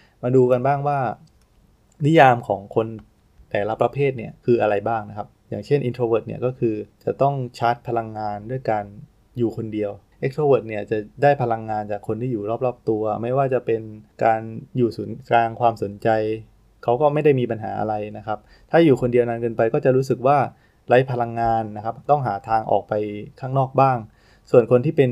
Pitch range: 105-125 Hz